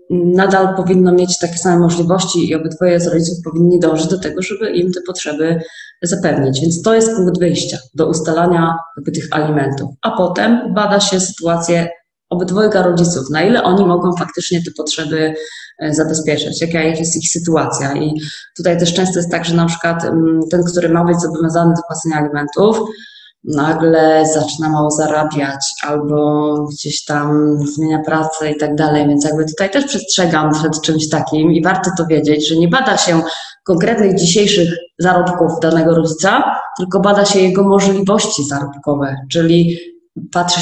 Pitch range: 155-180 Hz